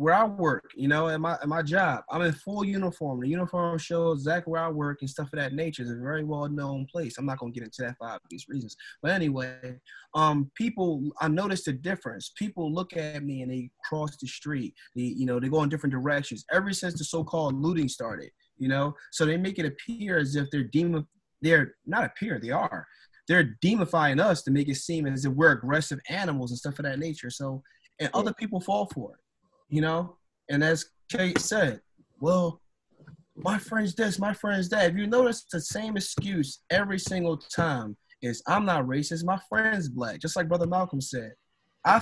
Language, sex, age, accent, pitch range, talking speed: English, male, 20-39, American, 135-175 Hz, 210 wpm